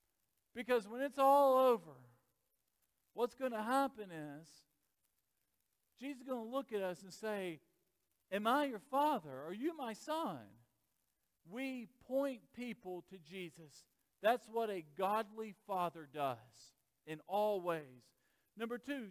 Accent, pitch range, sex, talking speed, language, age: American, 145-225 Hz, male, 135 wpm, English, 50-69